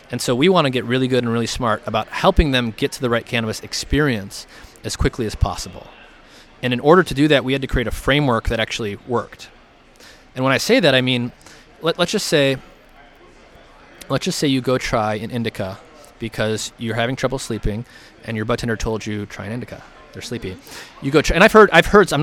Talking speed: 225 wpm